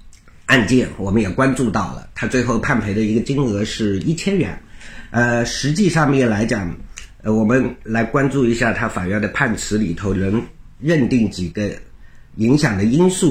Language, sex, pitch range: Chinese, male, 105-135 Hz